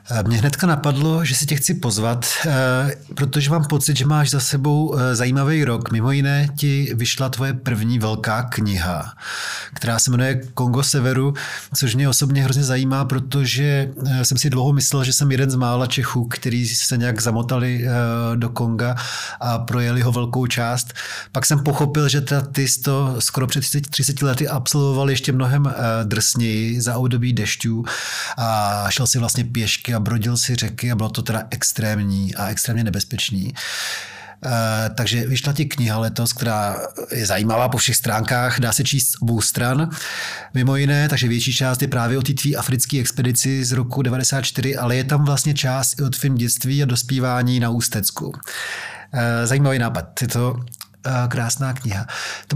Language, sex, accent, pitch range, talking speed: Czech, male, native, 120-140 Hz, 165 wpm